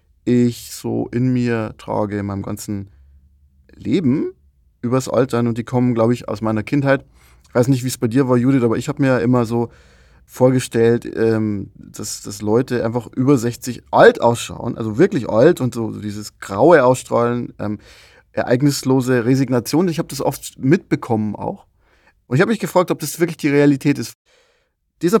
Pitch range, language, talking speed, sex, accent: 110-135 Hz, German, 175 wpm, male, German